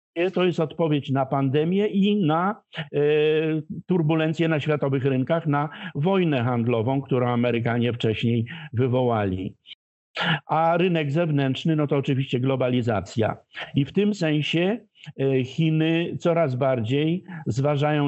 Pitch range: 130-160 Hz